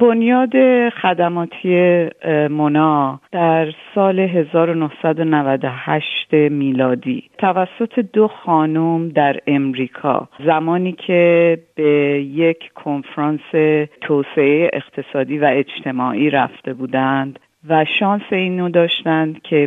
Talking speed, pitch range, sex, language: 85 wpm, 145-170 Hz, female, Persian